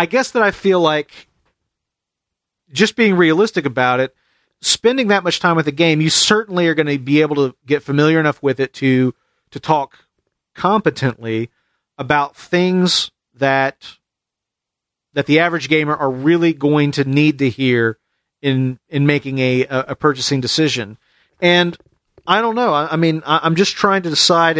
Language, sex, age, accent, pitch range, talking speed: English, male, 40-59, American, 140-175 Hz, 170 wpm